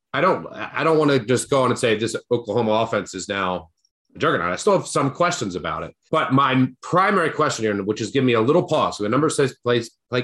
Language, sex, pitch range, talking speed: English, male, 110-140 Hz, 250 wpm